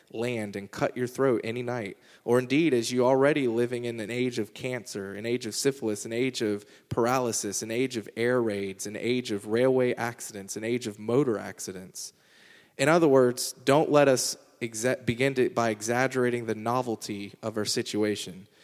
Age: 20-39